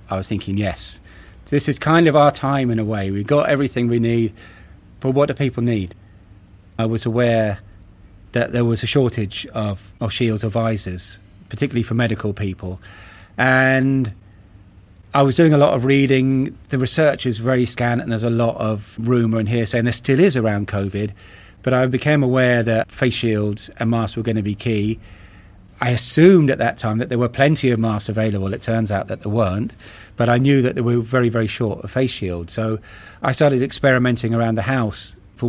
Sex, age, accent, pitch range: male, 30-49, British, 100-130 Hz